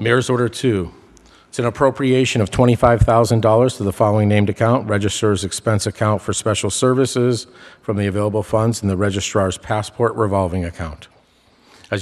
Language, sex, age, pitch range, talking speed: English, male, 50-69, 100-115 Hz, 150 wpm